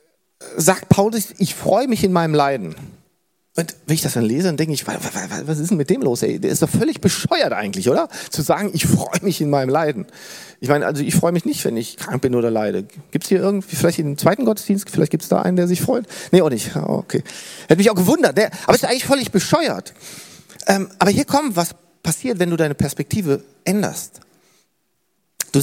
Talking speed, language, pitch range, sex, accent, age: 220 wpm, German, 165-210 Hz, male, German, 40-59